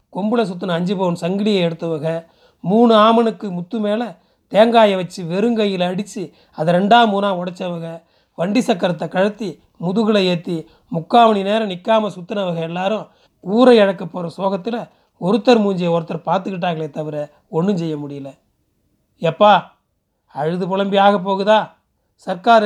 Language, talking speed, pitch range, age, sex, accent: Tamil, 120 wpm, 180-220 Hz, 30-49, male, native